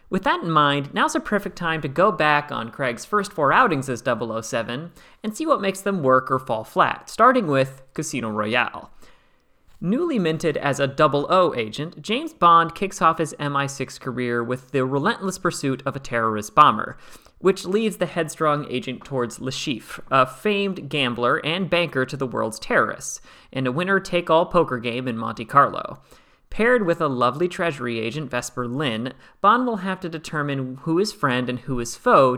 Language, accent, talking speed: English, American, 180 wpm